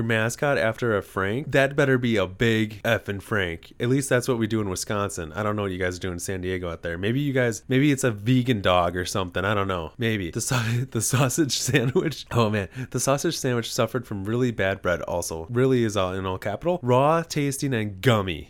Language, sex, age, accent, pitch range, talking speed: English, male, 20-39, American, 105-140 Hz, 235 wpm